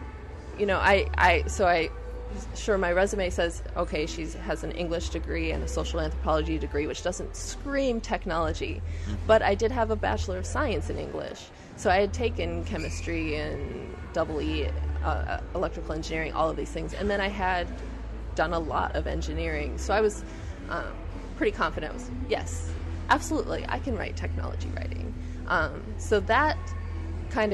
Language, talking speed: English, 170 wpm